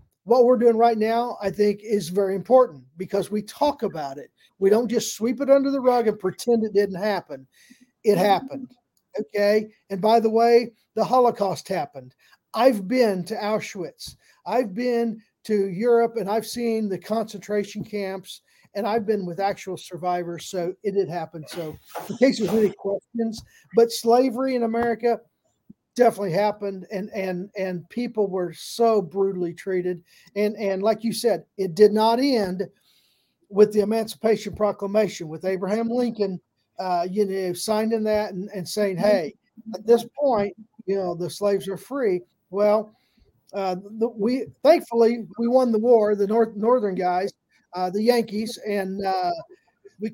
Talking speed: 160 wpm